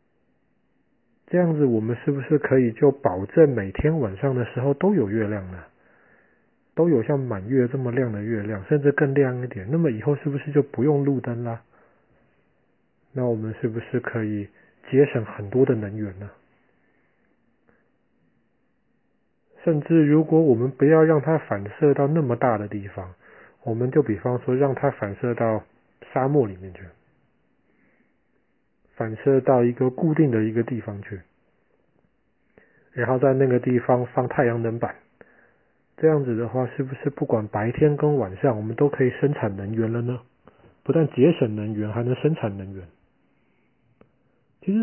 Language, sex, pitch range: Chinese, male, 110-145 Hz